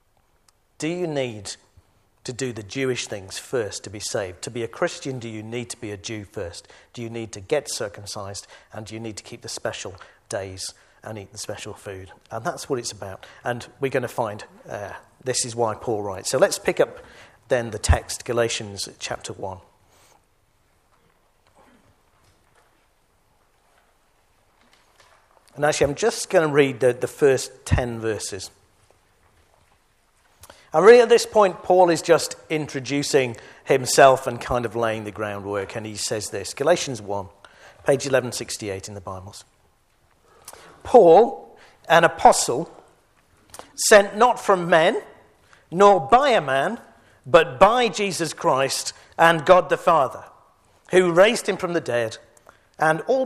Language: English